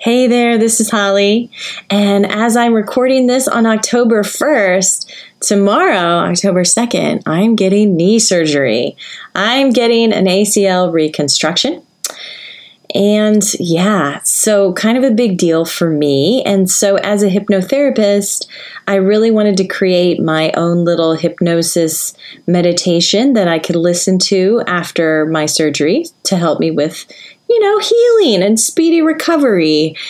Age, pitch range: 30-49, 170-230 Hz